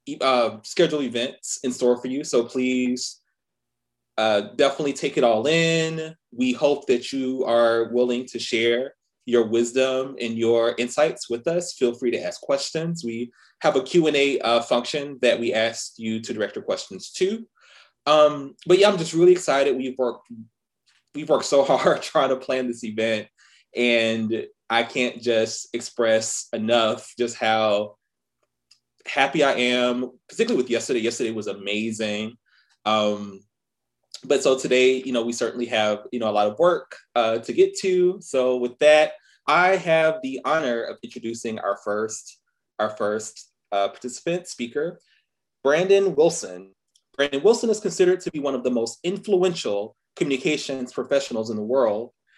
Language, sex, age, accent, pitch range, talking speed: English, male, 20-39, American, 115-155 Hz, 160 wpm